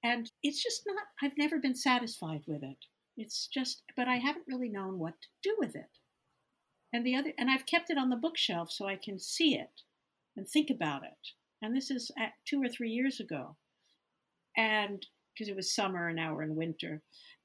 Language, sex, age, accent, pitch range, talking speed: English, female, 50-69, American, 195-255 Hz, 205 wpm